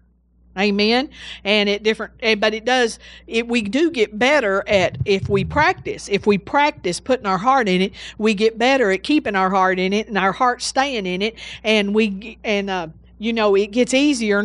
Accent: American